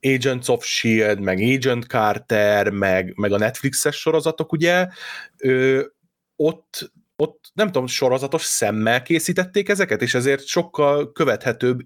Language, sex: Hungarian, male